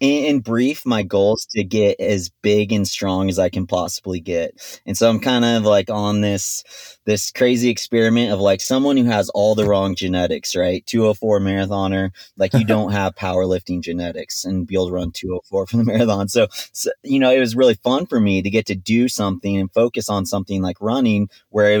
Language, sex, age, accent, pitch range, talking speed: English, male, 30-49, American, 95-115 Hz, 210 wpm